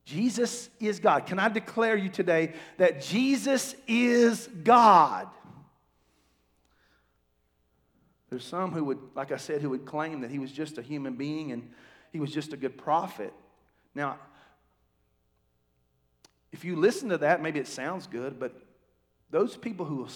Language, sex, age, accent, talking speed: English, male, 40-59, American, 150 wpm